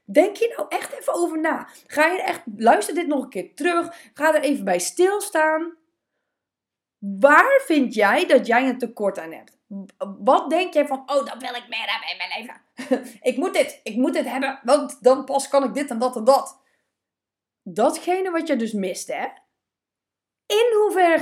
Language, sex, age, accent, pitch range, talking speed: Dutch, female, 20-39, Dutch, 230-315 Hz, 190 wpm